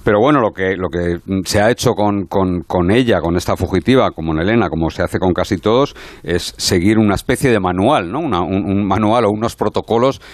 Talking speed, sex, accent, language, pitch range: 225 wpm, male, Spanish, Spanish, 90-115 Hz